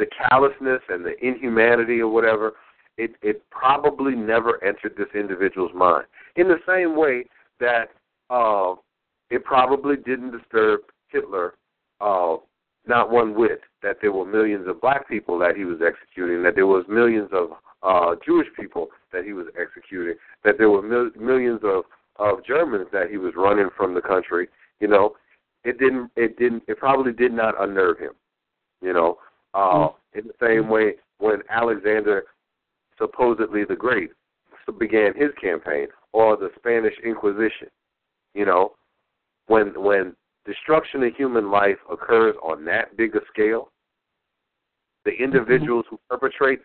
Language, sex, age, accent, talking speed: English, male, 50-69, American, 150 wpm